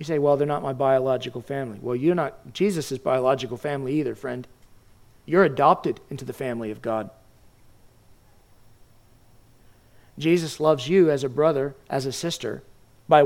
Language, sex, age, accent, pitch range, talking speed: English, male, 40-59, American, 120-160 Hz, 150 wpm